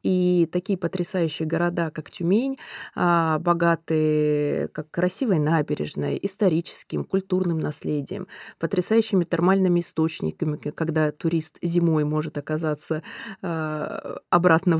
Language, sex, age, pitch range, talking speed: Russian, female, 20-39, 155-190 Hz, 85 wpm